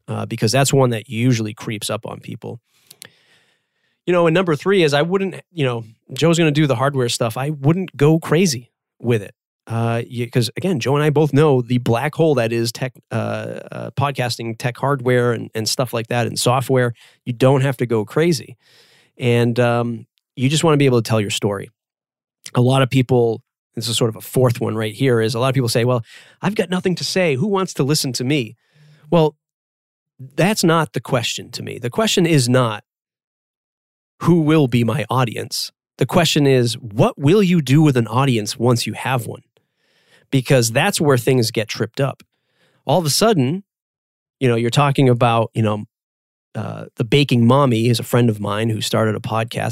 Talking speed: 205 wpm